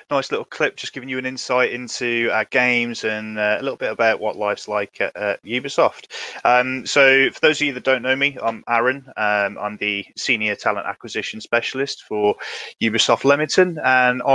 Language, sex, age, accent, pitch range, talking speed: English, male, 20-39, British, 105-130 Hz, 190 wpm